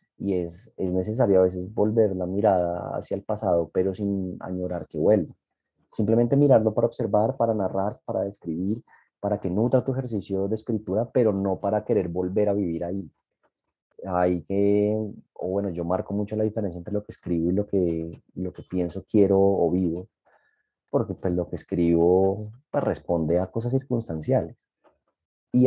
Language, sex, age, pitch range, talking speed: Spanish, male, 30-49, 90-115 Hz, 175 wpm